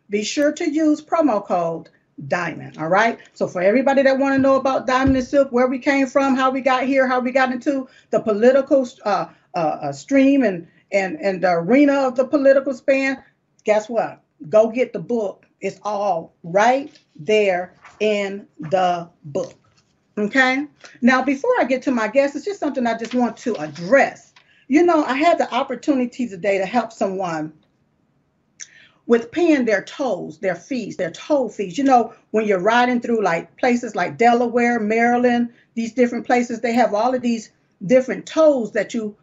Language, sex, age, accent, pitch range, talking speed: English, female, 40-59, American, 210-285 Hz, 175 wpm